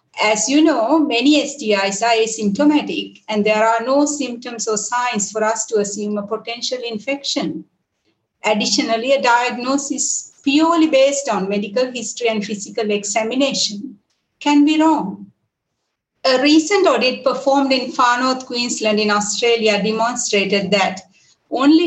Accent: Indian